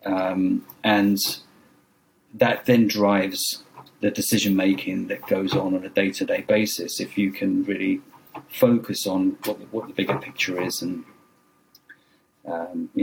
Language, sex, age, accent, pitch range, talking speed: English, male, 40-59, British, 100-125 Hz, 145 wpm